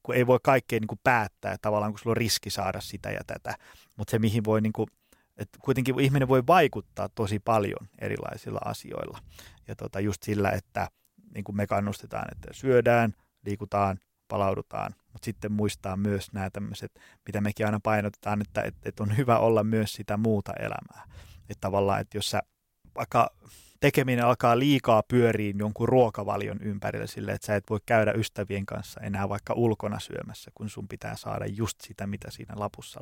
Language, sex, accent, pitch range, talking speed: Finnish, male, native, 100-115 Hz, 175 wpm